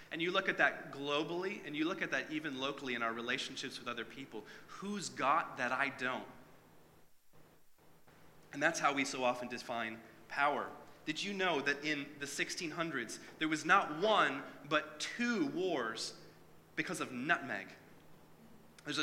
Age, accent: 30-49, American